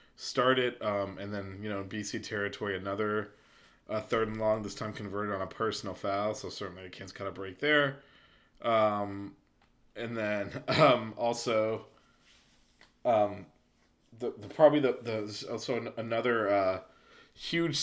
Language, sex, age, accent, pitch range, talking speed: English, male, 20-39, American, 100-120 Hz, 150 wpm